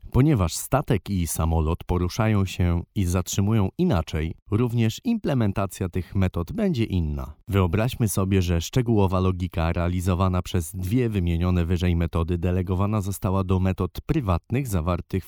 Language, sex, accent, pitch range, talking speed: Polish, male, native, 90-110 Hz, 125 wpm